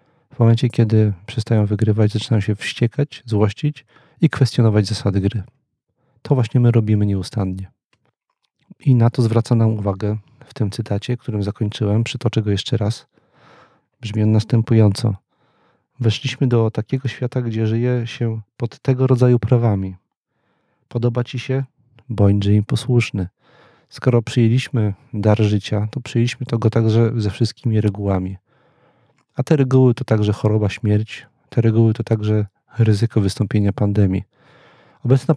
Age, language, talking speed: 40-59, Polish, 135 wpm